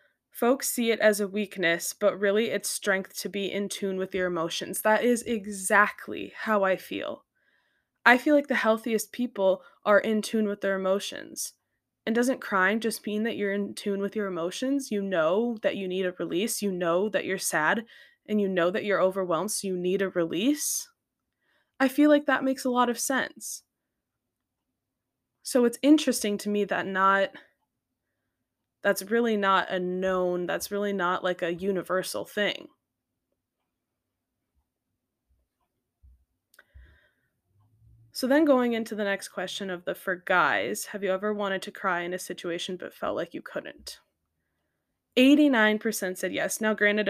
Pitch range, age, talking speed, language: 185-230 Hz, 10-29, 165 wpm, English